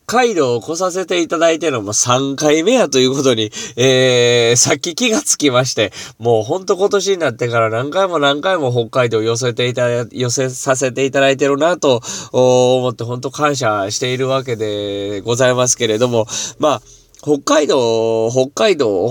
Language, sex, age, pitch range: Japanese, male, 20-39, 115-155 Hz